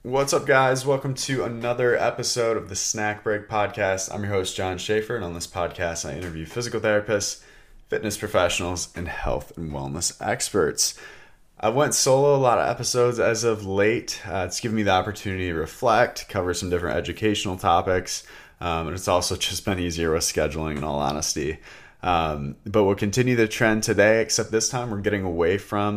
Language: English